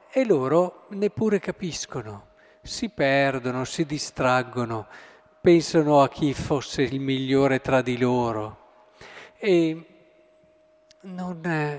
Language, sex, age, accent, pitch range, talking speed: Italian, male, 50-69, native, 140-175 Hz, 95 wpm